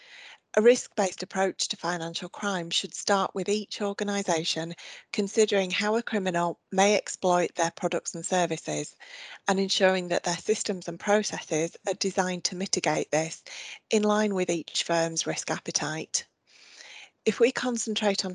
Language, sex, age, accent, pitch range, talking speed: English, female, 30-49, British, 175-205 Hz, 145 wpm